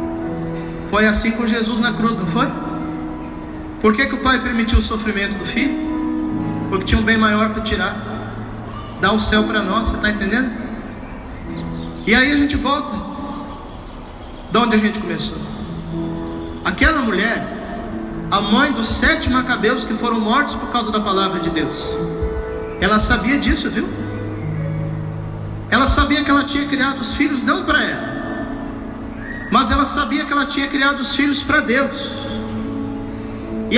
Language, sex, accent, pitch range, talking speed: Portuguese, male, Brazilian, 190-280 Hz, 150 wpm